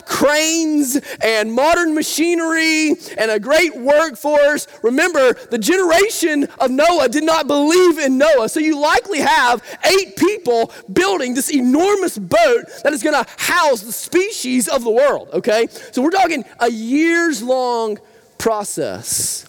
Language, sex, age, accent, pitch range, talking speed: English, male, 30-49, American, 255-345 Hz, 140 wpm